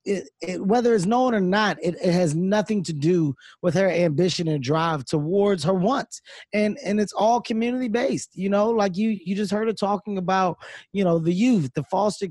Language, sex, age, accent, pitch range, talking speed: English, male, 20-39, American, 185-225 Hz, 210 wpm